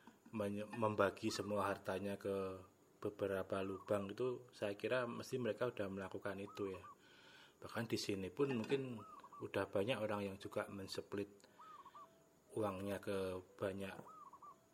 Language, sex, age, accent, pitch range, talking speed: Indonesian, male, 20-39, native, 100-115 Hz, 120 wpm